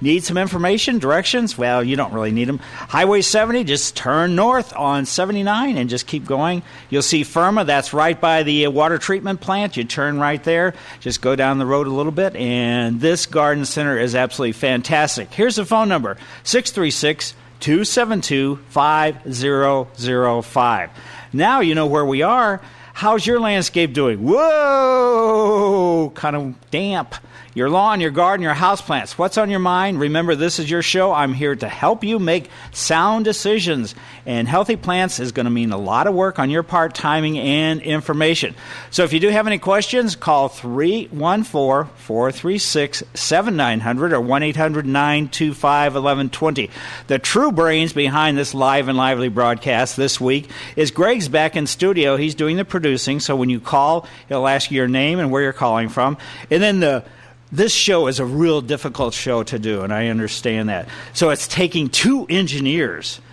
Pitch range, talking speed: 130-180 Hz, 165 wpm